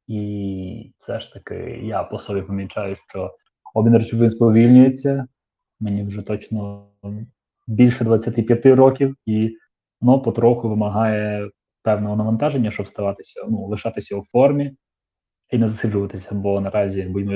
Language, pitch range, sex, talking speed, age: Ukrainian, 100-120 Hz, male, 125 wpm, 20-39